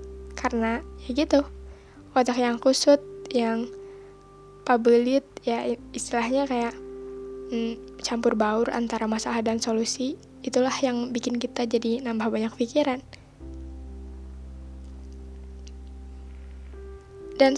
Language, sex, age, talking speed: Indonesian, female, 10-29, 90 wpm